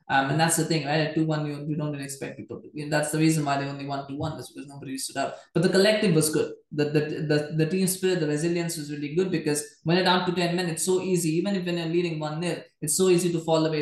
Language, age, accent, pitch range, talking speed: English, 20-39, Indian, 145-170 Hz, 285 wpm